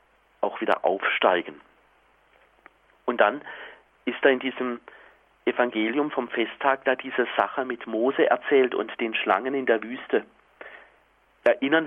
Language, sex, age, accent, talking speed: German, male, 40-59, German, 120 wpm